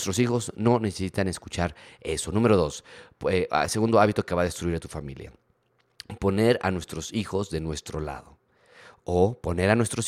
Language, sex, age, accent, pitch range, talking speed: Spanish, male, 30-49, Mexican, 85-110 Hz, 175 wpm